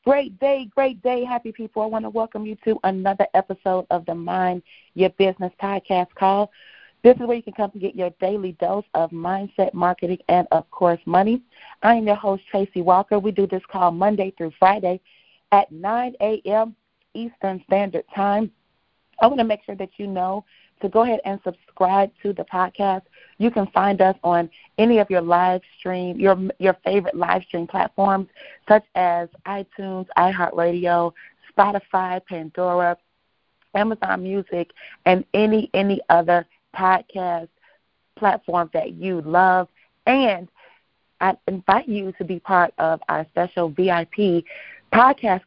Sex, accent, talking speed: female, American, 155 wpm